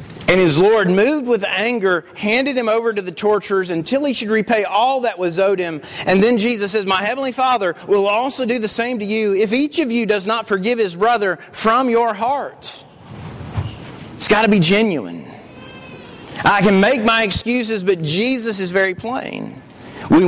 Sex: male